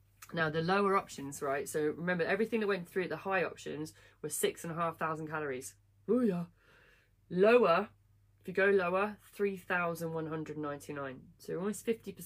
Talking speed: 120 wpm